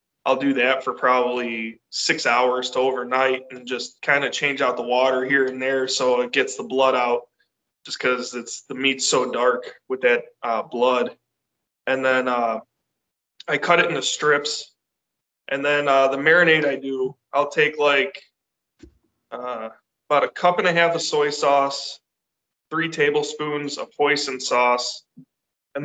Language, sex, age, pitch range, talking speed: English, male, 20-39, 125-145 Hz, 165 wpm